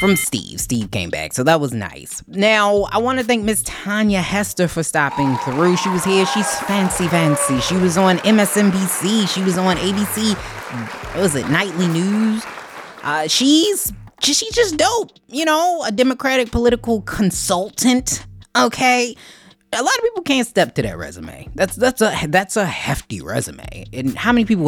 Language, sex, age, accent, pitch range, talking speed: English, female, 20-39, American, 140-205 Hz, 175 wpm